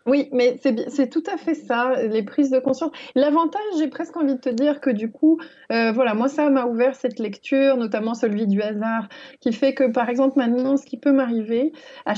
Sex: female